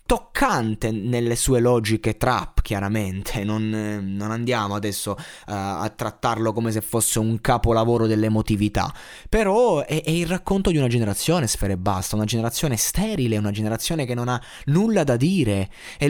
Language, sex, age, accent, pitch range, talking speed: Italian, male, 20-39, native, 115-175 Hz, 155 wpm